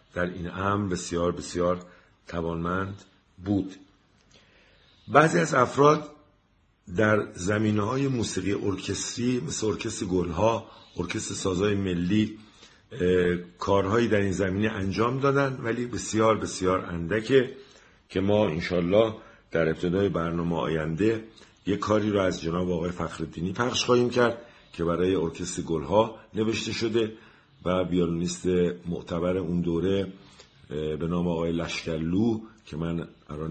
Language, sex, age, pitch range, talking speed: Persian, male, 50-69, 85-110 Hz, 120 wpm